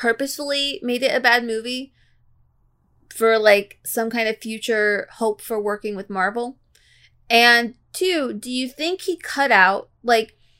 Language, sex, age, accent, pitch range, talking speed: English, female, 20-39, American, 205-265 Hz, 145 wpm